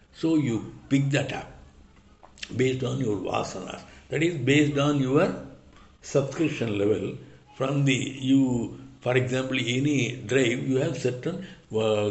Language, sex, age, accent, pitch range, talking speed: English, male, 60-79, Indian, 105-140 Hz, 135 wpm